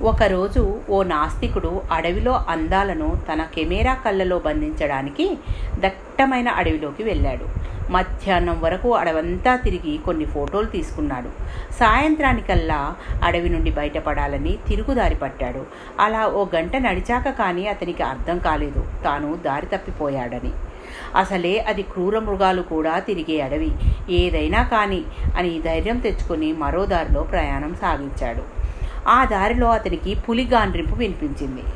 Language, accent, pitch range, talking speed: Telugu, native, 165-230 Hz, 110 wpm